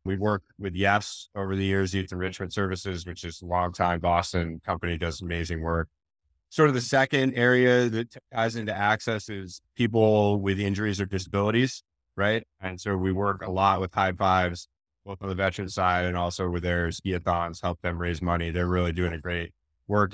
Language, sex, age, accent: English, male, 30-49, American